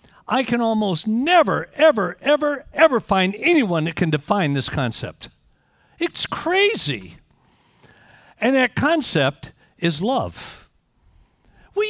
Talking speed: 110 wpm